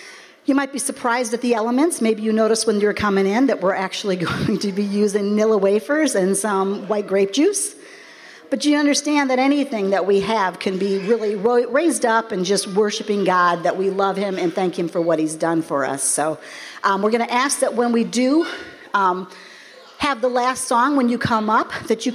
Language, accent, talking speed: English, American, 215 wpm